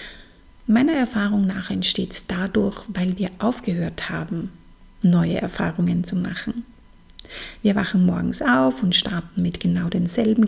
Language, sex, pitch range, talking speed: German, female, 180-235 Hz, 125 wpm